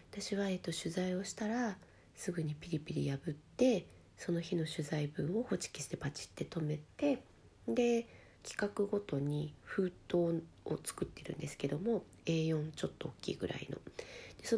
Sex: female